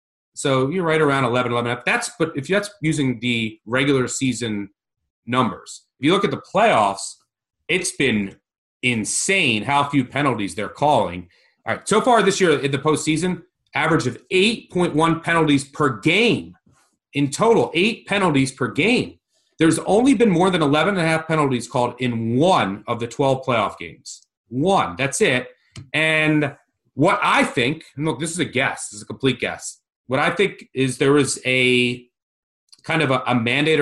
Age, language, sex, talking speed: 30-49, English, male, 175 wpm